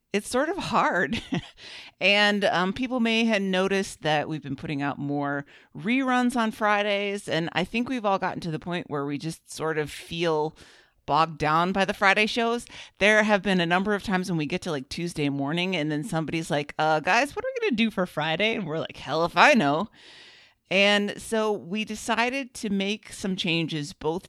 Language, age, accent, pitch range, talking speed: English, 30-49, American, 145-195 Hz, 210 wpm